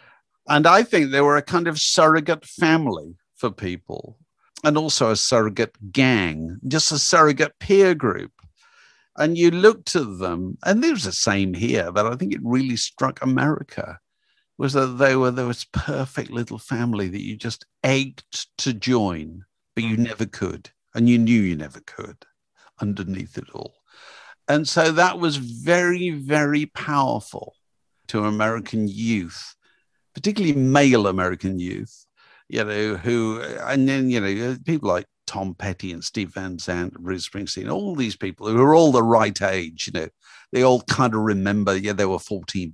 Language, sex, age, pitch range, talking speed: English, male, 50-69, 100-145 Hz, 165 wpm